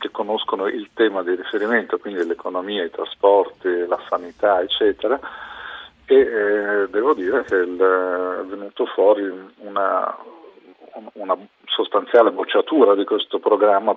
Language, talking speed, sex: Italian, 125 wpm, male